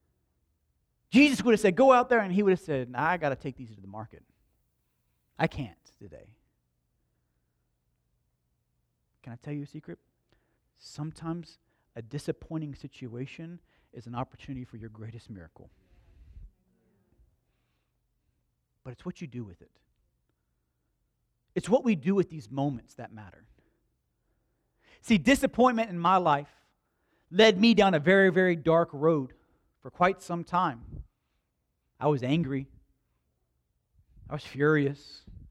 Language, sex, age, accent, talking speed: English, male, 40-59, American, 135 wpm